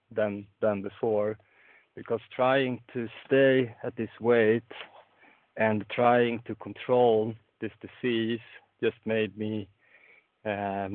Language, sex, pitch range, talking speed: English, male, 105-120 Hz, 110 wpm